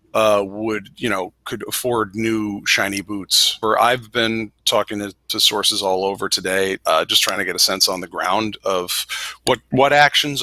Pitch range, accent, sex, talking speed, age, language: 105-120 Hz, American, male, 190 wpm, 40-59, English